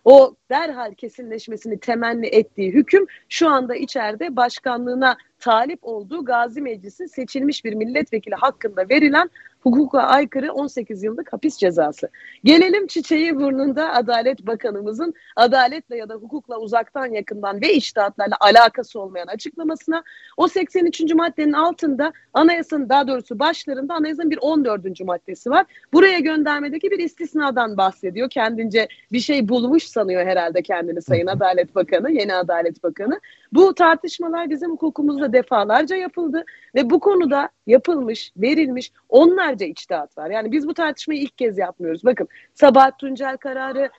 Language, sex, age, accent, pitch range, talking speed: Turkish, female, 40-59, native, 230-315 Hz, 130 wpm